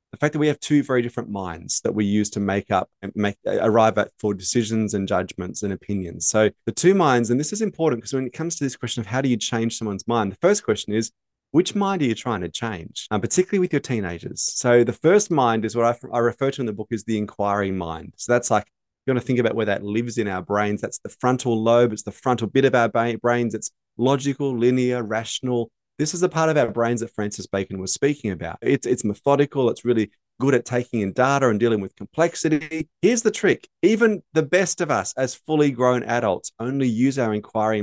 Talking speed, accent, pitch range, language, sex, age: 240 wpm, Australian, 105-135 Hz, English, male, 20-39